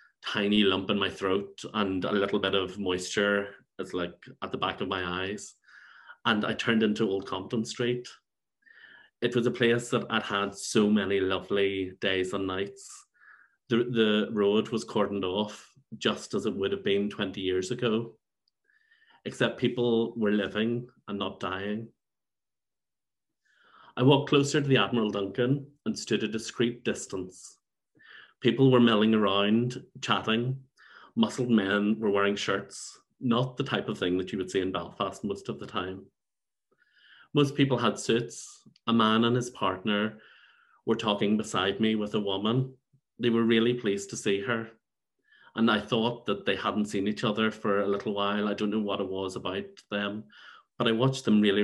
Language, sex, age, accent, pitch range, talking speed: English, male, 30-49, Irish, 100-120 Hz, 170 wpm